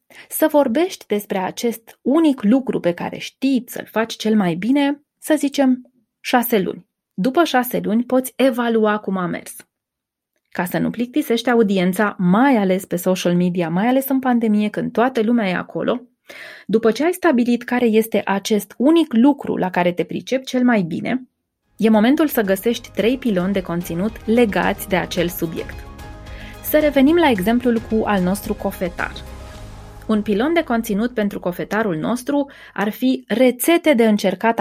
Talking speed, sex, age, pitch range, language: 160 wpm, female, 20-39, 195-260 Hz, Romanian